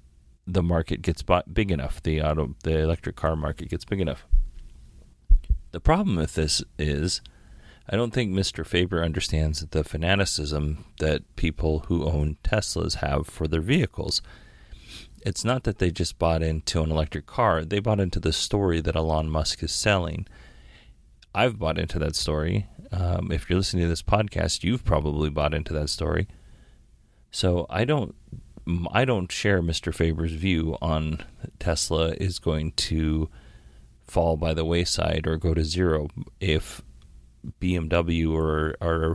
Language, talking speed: English, 155 wpm